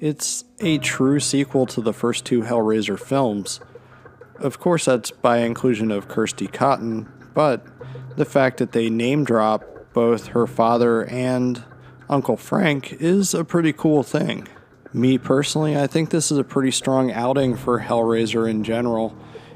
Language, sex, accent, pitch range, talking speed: English, male, American, 115-135 Hz, 155 wpm